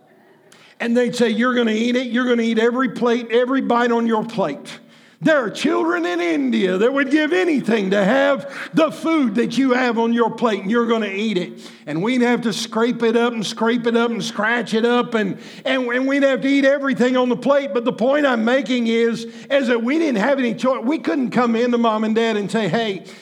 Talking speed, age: 245 wpm, 50-69